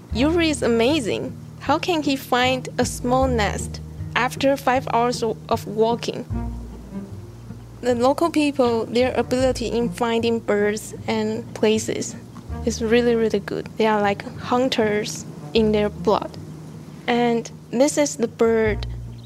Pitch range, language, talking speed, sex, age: 215-250 Hz, English, 130 wpm, female, 10-29